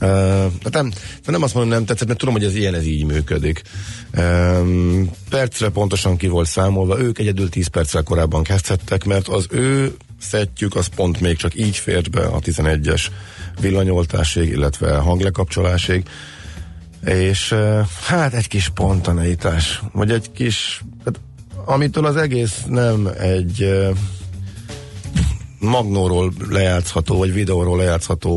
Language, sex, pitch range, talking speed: Hungarian, male, 85-105 Hz, 140 wpm